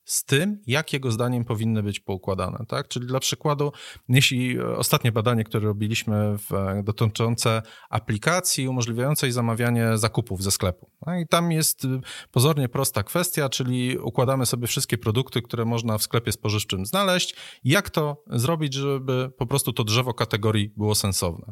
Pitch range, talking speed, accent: 110-140 Hz, 150 wpm, native